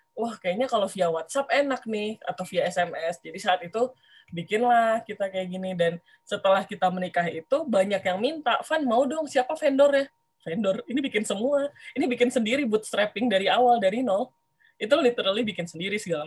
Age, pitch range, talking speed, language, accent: 20-39, 180-245 Hz, 175 wpm, Indonesian, native